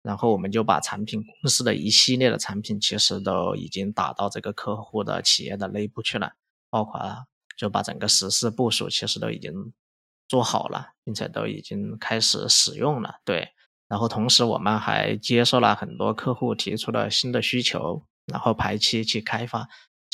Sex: male